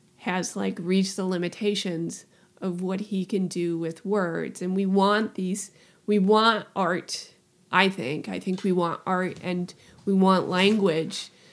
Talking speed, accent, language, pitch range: 155 wpm, American, English, 185-215 Hz